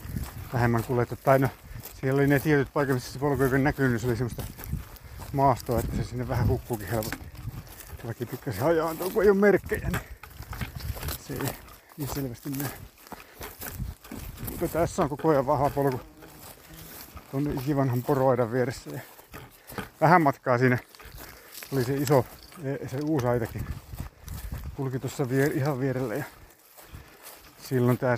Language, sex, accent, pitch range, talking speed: Finnish, male, native, 110-135 Hz, 125 wpm